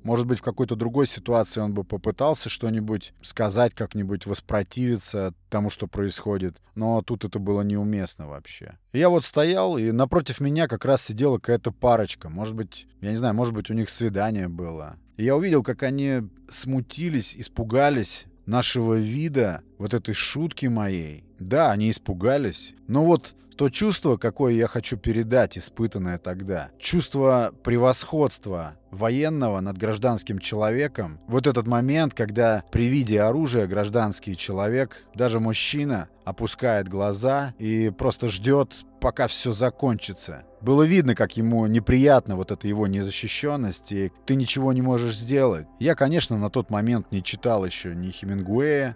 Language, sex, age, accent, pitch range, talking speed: Russian, male, 20-39, native, 100-130 Hz, 145 wpm